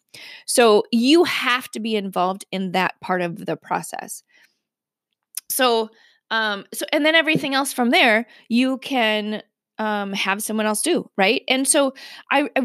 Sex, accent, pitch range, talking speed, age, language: female, American, 195-245 Hz, 155 wpm, 20-39, English